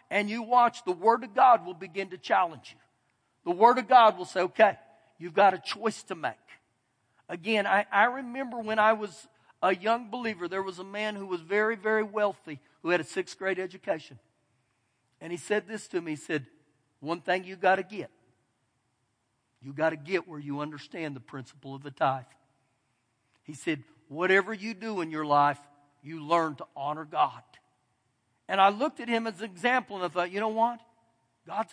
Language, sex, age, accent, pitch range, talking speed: English, male, 50-69, American, 145-210 Hz, 195 wpm